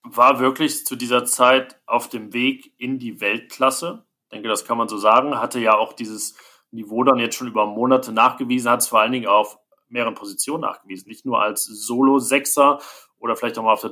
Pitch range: 110-130 Hz